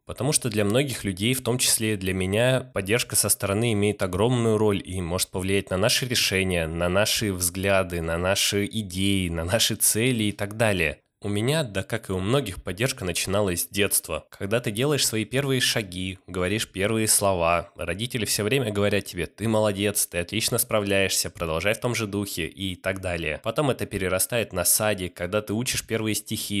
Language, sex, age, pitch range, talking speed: Russian, male, 20-39, 95-115 Hz, 185 wpm